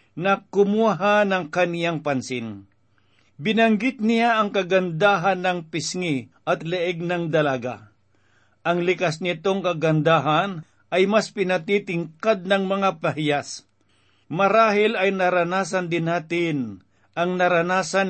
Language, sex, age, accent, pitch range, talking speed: Filipino, male, 50-69, native, 150-195 Hz, 105 wpm